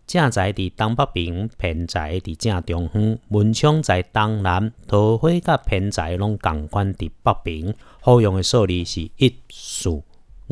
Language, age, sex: Chinese, 50-69, male